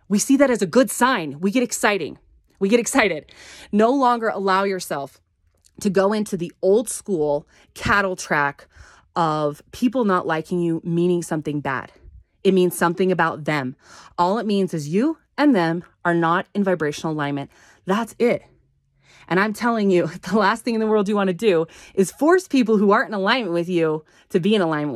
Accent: American